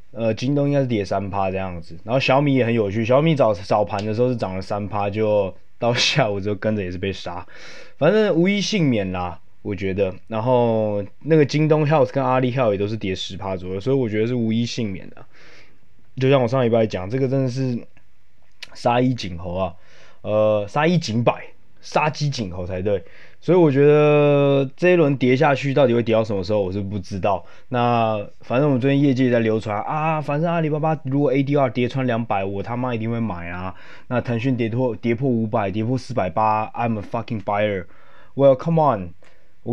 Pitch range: 105-135 Hz